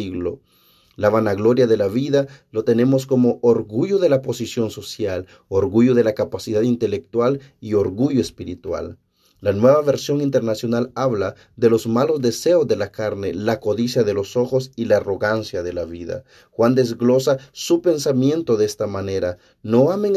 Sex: male